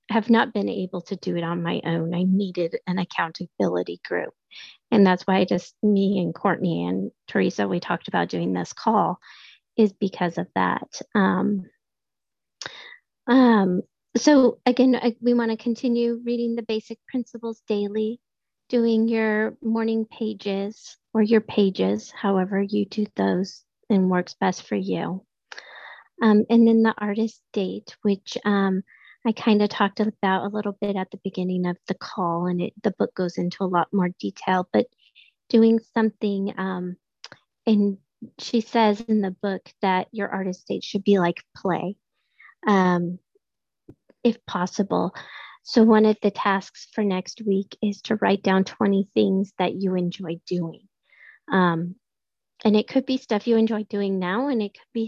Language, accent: English, American